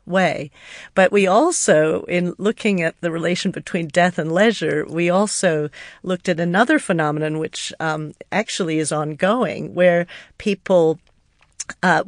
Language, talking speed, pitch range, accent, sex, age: English, 135 wpm, 165-195 Hz, American, female, 50-69